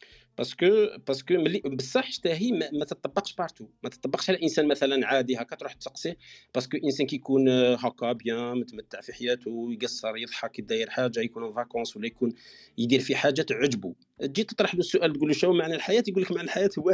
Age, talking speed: 40-59, 185 wpm